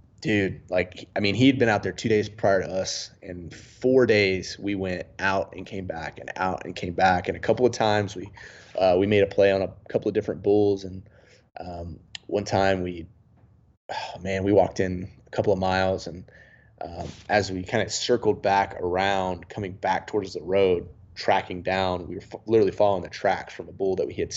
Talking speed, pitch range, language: 210 wpm, 90-105 Hz, English